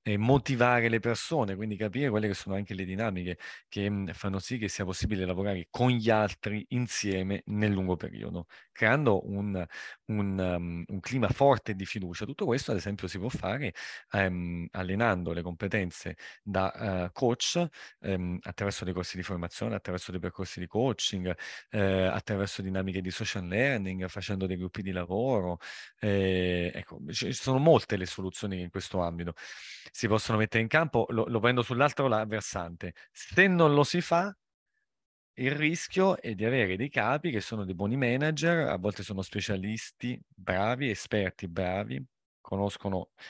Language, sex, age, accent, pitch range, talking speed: Italian, male, 30-49, native, 95-115 Hz, 165 wpm